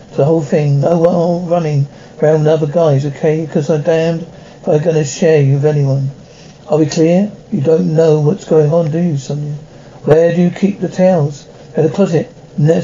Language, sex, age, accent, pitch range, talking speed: English, male, 60-79, British, 150-180 Hz, 210 wpm